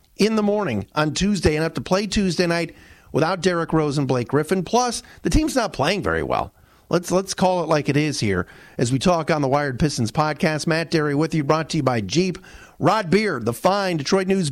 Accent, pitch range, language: American, 155-195 Hz, English